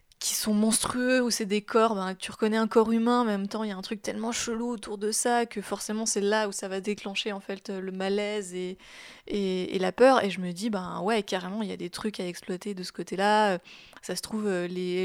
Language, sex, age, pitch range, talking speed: French, female, 20-39, 185-220 Hz, 255 wpm